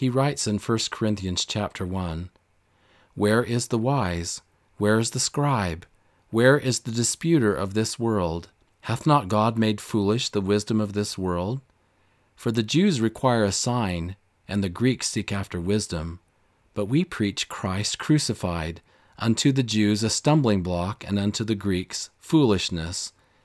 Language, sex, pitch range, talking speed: English, male, 90-115 Hz, 155 wpm